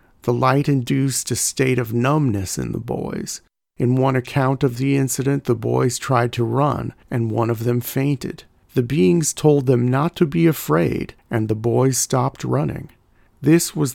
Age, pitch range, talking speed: 50-69, 115-135 Hz, 175 wpm